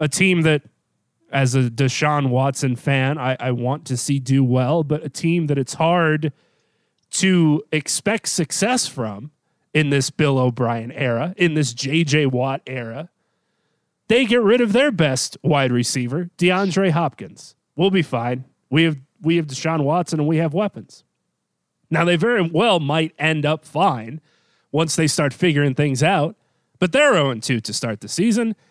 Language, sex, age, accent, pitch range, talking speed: English, male, 30-49, American, 135-170 Hz, 165 wpm